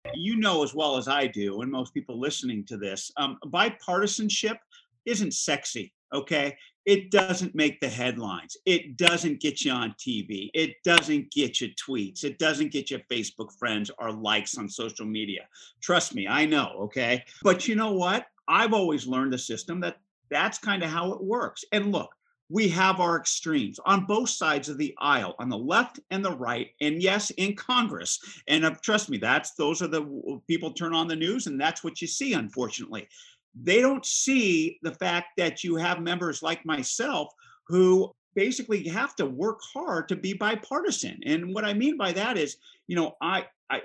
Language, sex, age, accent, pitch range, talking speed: English, male, 50-69, American, 150-210 Hz, 185 wpm